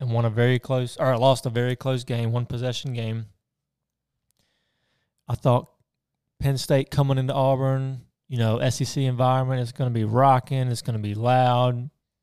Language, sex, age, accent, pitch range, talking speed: English, male, 20-39, American, 120-135 Hz, 175 wpm